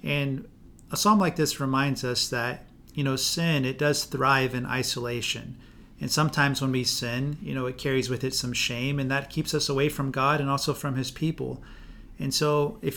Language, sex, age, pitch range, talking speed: English, male, 40-59, 130-150 Hz, 205 wpm